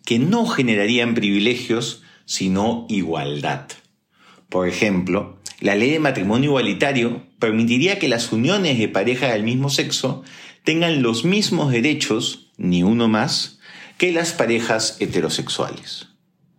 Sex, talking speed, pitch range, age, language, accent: male, 120 wpm, 105-145 Hz, 40-59, Spanish, Argentinian